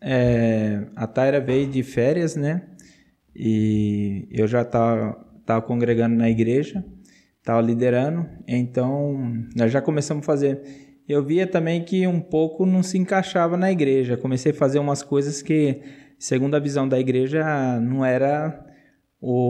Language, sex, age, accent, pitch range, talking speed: Portuguese, male, 20-39, Brazilian, 130-175 Hz, 150 wpm